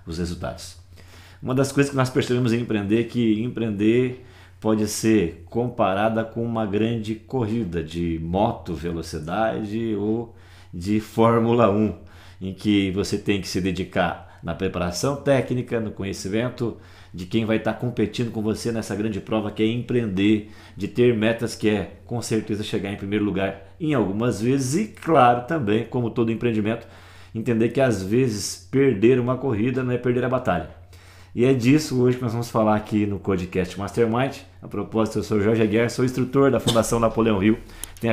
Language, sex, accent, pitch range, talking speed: Portuguese, male, Brazilian, 95-120 Hz, 170 wpm